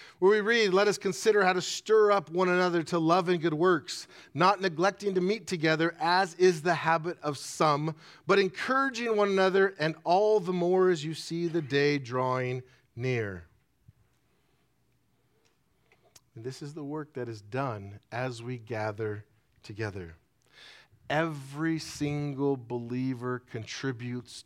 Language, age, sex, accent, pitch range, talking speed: English, 40-59, male, American, 120-165 Hz, 140 wpm